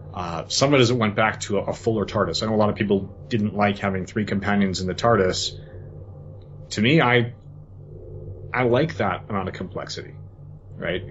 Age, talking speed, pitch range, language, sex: 30-49, 200 wpm, 95-115 Hz, English, male